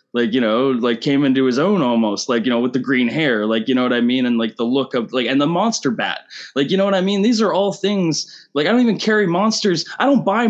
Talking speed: 290 wpm